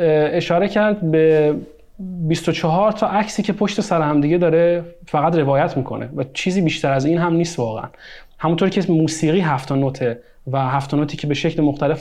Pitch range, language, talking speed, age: 135-170 Hz, Persian, 185 wpm, 30-49